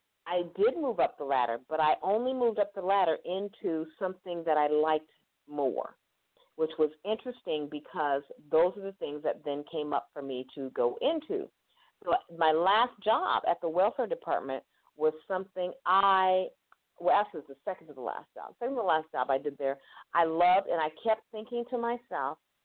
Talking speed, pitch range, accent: 190 wpm, 155-240 Hz, American